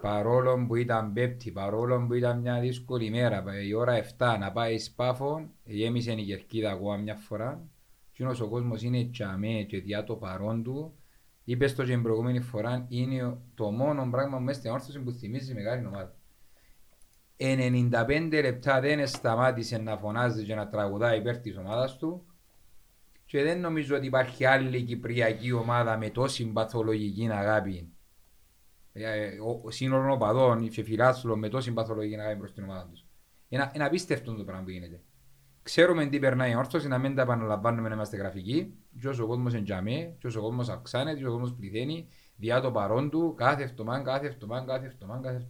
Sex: male